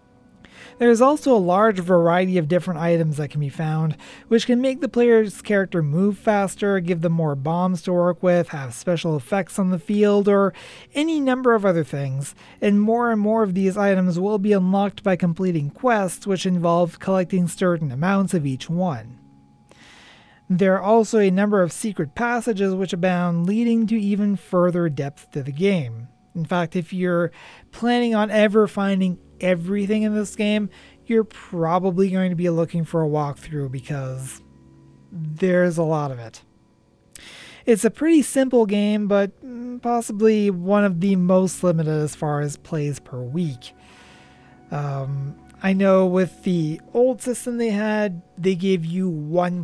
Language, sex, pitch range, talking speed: English, male, 160-205 Hz, 165 wpm